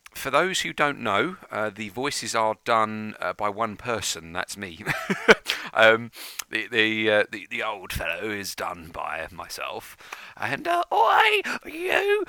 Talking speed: 155 wpm